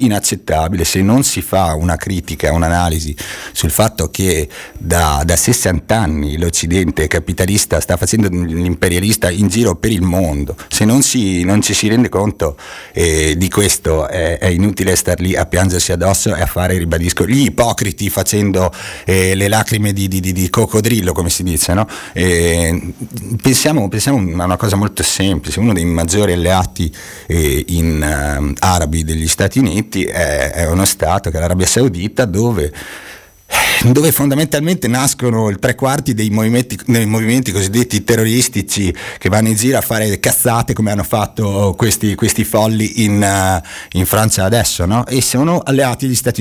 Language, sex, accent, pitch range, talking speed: Italian, male, native, 85-110 Hz, 160 wpm